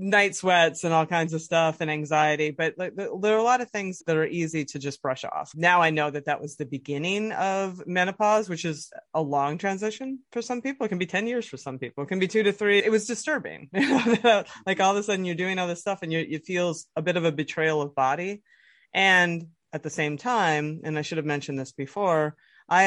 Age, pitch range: 30-49, 150-190 Hz